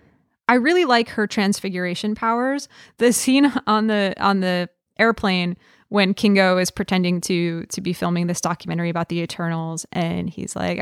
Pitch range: 175-205 Hz